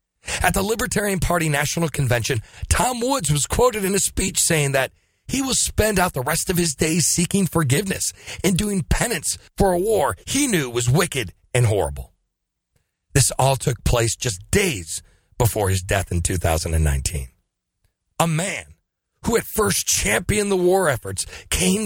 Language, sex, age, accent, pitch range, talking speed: English, male, 40-59, American, 95-155 Hz, 160 wpm